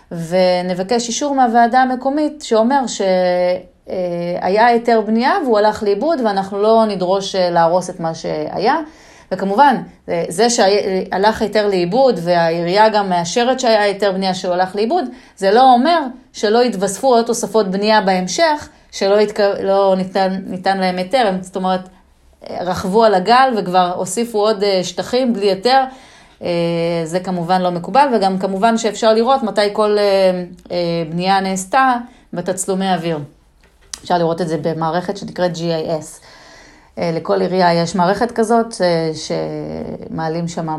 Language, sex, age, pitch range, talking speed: Hebrew, female, 30-49, 180-230 Hz, 130 wpm